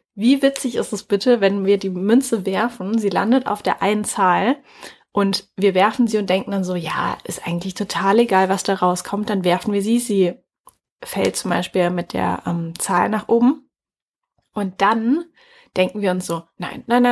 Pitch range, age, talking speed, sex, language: 185-235 Hz, 20-39, 190 wpm, female, German